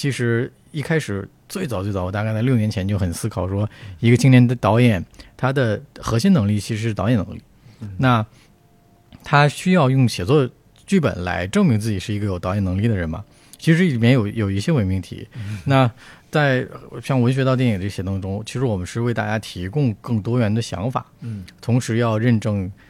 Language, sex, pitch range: Chinese, male, 105-135 Hz